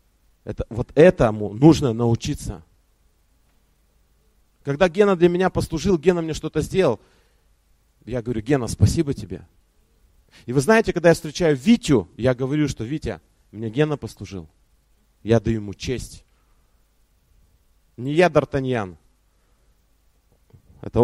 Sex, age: male, 30-49